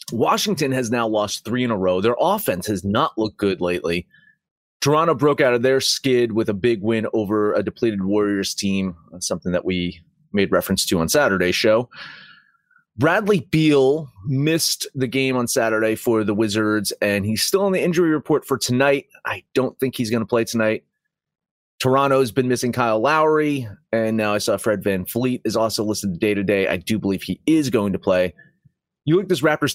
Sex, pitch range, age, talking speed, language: male, 105-140 Hz, 30-49, 190 wpm, English